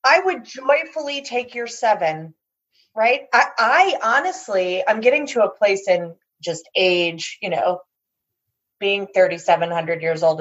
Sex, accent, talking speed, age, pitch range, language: female, American, 140 wpm, 30-49, 185-235 Hz, English